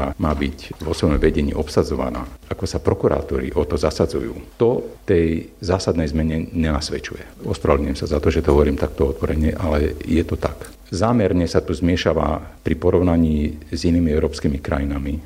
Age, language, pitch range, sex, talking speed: 50-69, Slovak, 75-90 Hz, male, 155 wpm